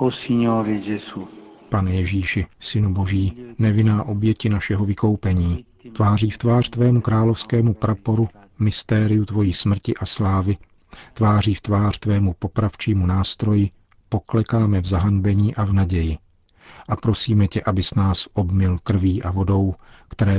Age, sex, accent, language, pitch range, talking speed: 50-69, male, native, Czech, 95-110 Hz, 120 wpm